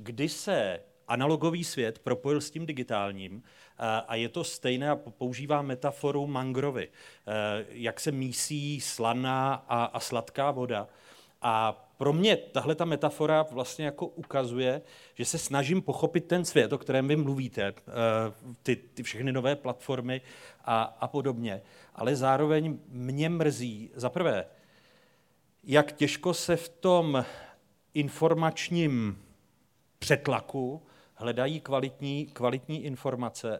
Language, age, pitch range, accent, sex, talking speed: Czech, 40-59, 120-145 Hz, native, male, 120 wpm